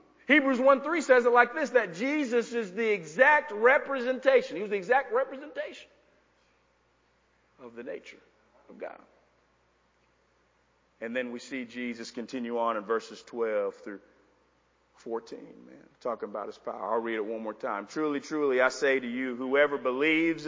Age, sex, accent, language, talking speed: 40-59, male, American, English, 155 wpm